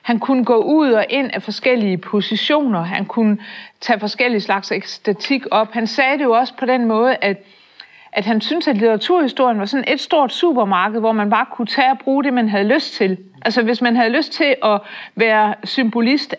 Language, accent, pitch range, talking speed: Danish, native, 200-250 Hz, 205 wpm